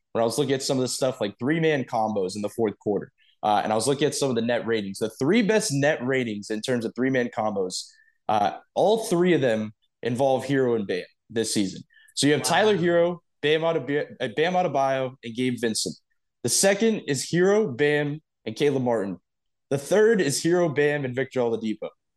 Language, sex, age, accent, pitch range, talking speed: English, male, 20-39, American, 120-155 Hz, 200 wpm